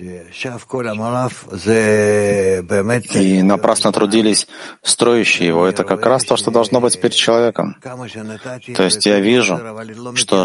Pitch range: 95-110 Hz